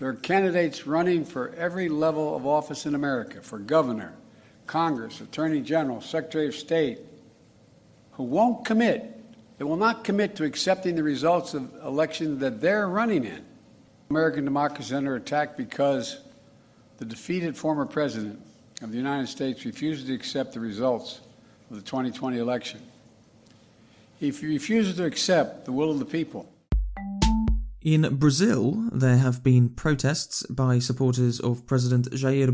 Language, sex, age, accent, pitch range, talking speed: English, male, 60-79, American, 125-155 Hz, 145 wpm